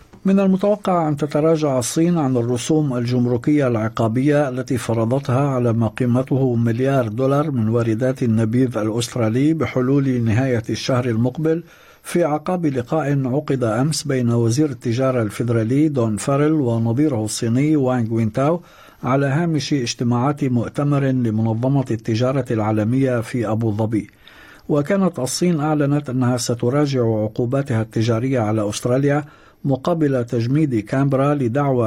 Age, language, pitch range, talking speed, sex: 60-79, Arabic, 115-145 Hz, 115 wpm, male